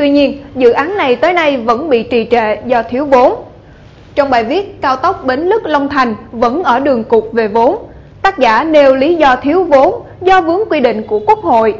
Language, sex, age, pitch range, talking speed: Vietnamese, female, 20-39, 225-295 Hz, 215 wpm